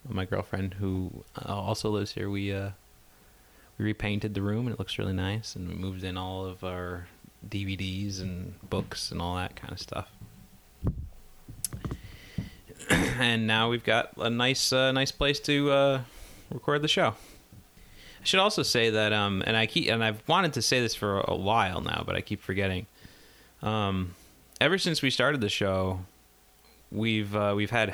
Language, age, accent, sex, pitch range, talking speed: English, 30-49, American, male, 95-110 Hz, 175 wpm